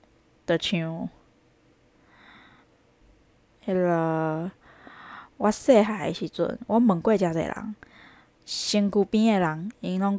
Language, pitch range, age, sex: Chinese, 170-210 Hz, 20-39, female